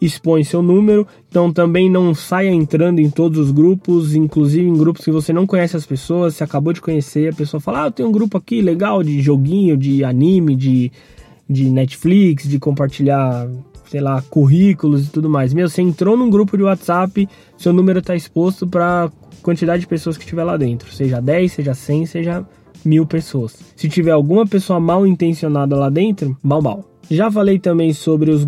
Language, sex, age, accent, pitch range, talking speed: Portuguese, male, 20-39, Brazilian, 140-185 Hz, 190 wpm